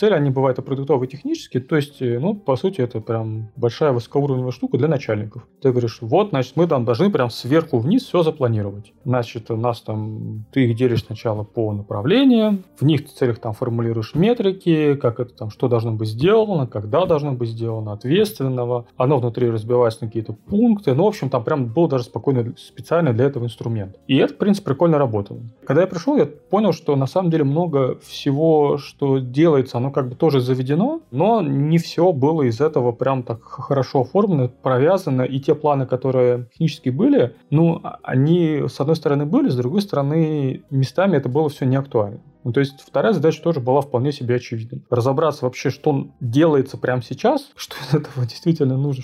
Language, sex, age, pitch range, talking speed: Russian, male, 20-39, 120-155 Hz, 190 wpm